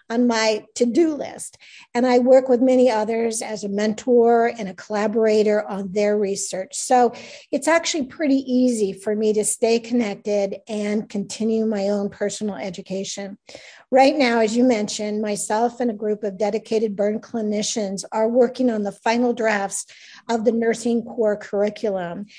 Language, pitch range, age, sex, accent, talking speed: English, 205-245 Hz, 50-69, female, American, 160 wpm